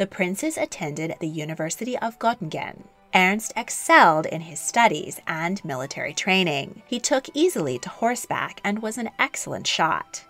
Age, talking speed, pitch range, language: 30-49, 145 wpm, 165-230 Hz, English